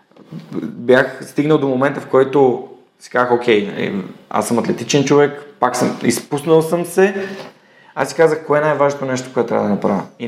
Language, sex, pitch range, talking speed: Bulgarian, male, 105-140 Hz, 180 wpm